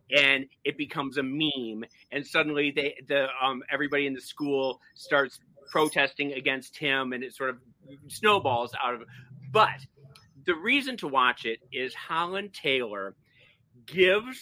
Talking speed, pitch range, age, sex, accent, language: 150 wpm, 125-155 Hz, 40-59, male, American, English